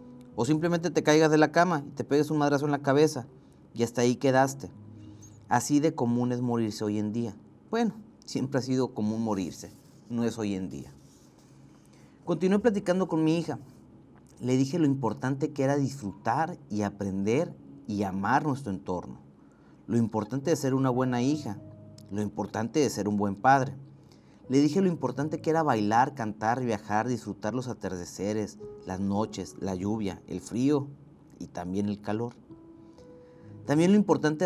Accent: Mexican